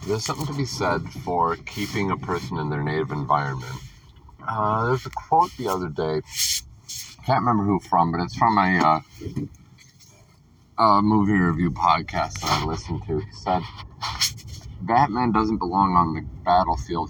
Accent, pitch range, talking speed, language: American, 85-110 Hz, 160 wpm, English